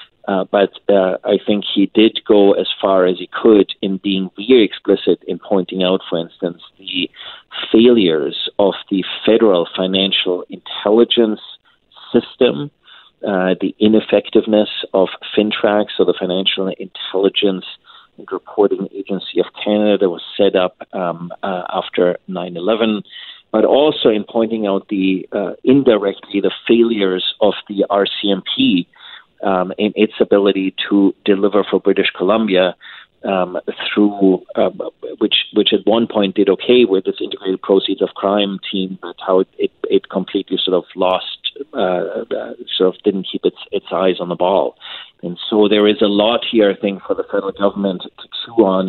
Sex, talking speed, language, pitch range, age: male, 155 wpm, English, 95-110 Hz, 40-59